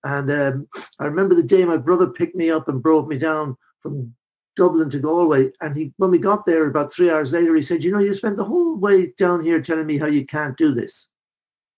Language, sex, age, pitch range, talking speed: English, male, 60-79, 155-200 Hz, 240 wpm